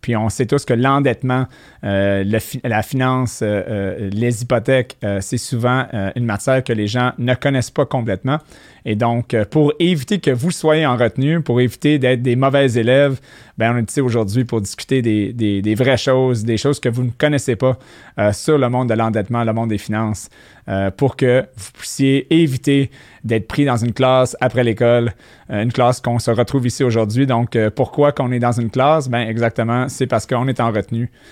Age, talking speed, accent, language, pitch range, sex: 30-49, 205 wpm, Canadian, French, 115-140 Hz, male